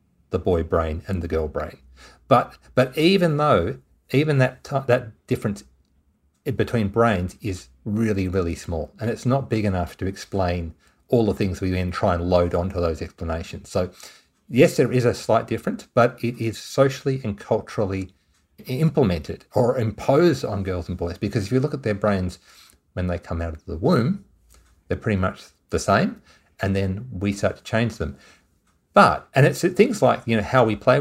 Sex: male